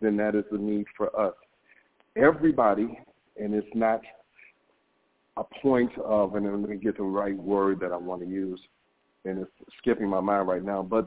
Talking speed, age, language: 190 wpm, 50-69, English